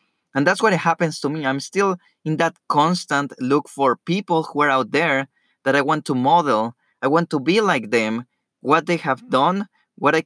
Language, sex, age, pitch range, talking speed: English, male, 20-39, 135-170 Hz, 205 wpm